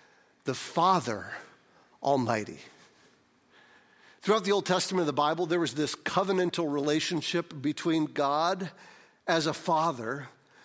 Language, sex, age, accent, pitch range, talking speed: English, male, 50-69, American, 185-250 Hz, 115 wpm